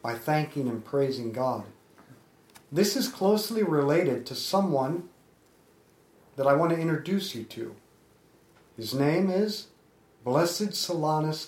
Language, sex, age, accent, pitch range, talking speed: English, male, 50-69, American, 135-180 Hz, 120 wpm